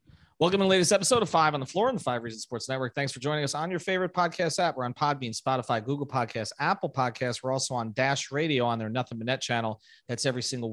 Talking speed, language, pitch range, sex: 265 wpm, English, 125-160 Hz, male